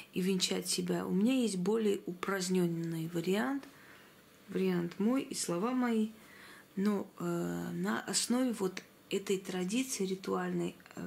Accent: native